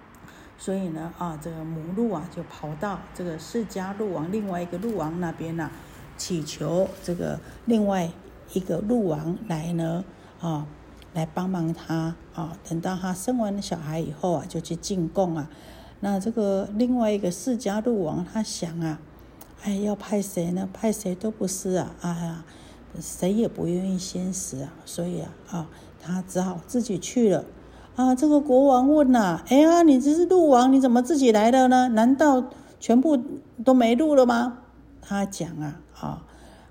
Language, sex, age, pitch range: Chinese, female, 60-79, 170-220 Hz